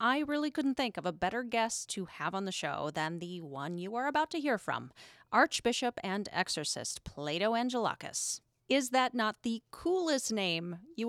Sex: female